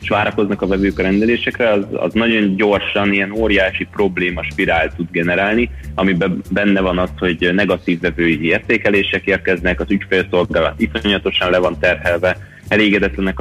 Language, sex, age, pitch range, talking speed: Hungarian, male, 30-49, 85-110 Hz, 145 wpm